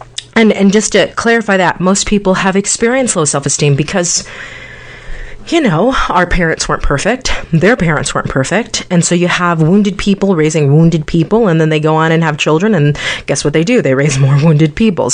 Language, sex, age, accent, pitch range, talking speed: English, female, 30-49, American, 140-175 Hz, 200 wpm